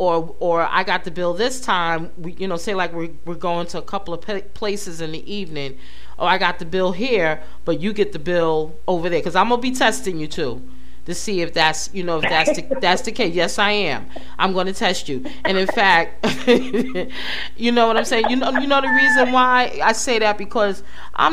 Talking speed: 235 wpm